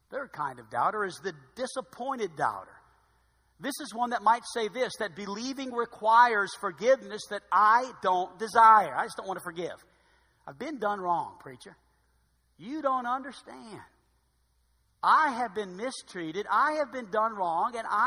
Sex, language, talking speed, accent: male, English, 155 wpm, American